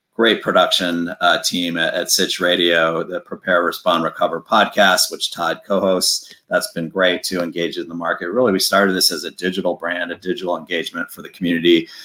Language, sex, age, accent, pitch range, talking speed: English, male, 40-59, American, 85-95 Hz, 190 wpm